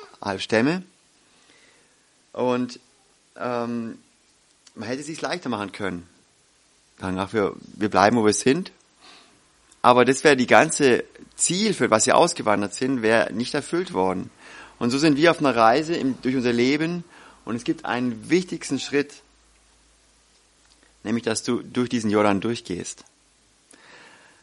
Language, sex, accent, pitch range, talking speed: German, male, German, 115-145 Hz, 135 wpm